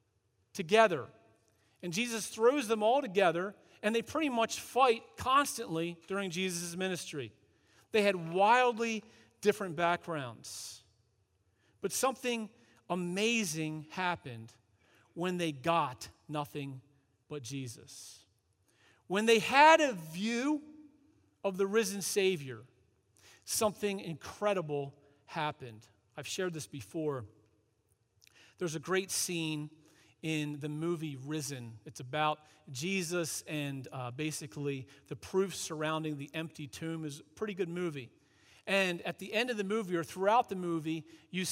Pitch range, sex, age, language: 140-195 Hz, male, 40-59, English